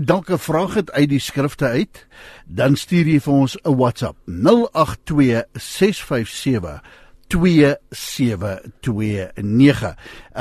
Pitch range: 130-190 Hz